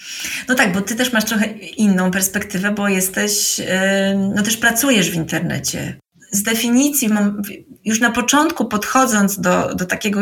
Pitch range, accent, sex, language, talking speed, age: 205-245 Hz, native, female, Polish, 145 wpm, 20-39